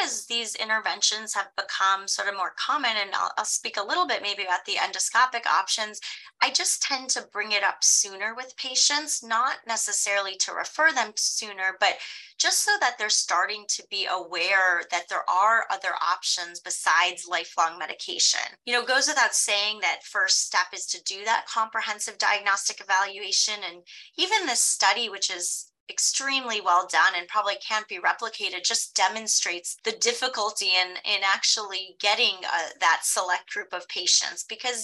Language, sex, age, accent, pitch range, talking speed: English, female, 20-39, American, 190-245 Hz, 170 wpm